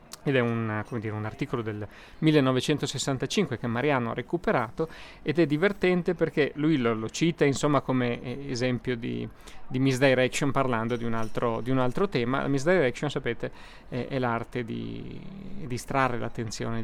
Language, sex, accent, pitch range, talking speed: Italian, male, native, 120-175 Hz, 155 wpm